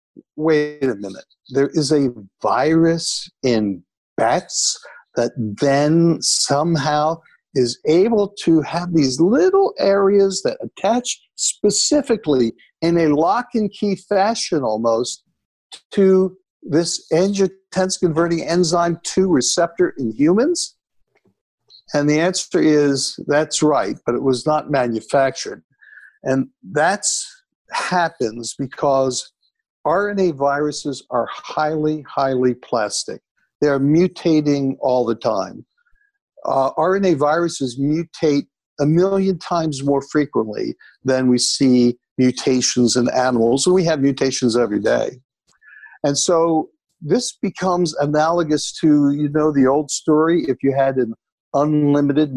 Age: 60-79